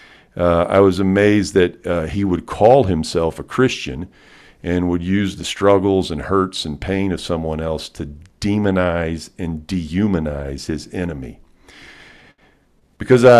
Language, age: English, 50-69